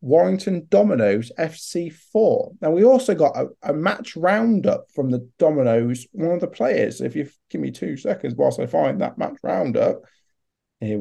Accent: British